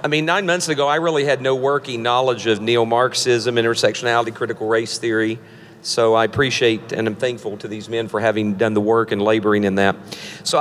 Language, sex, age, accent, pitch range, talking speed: English, male, 50-69, American, 115-140 Hz, 205 wpm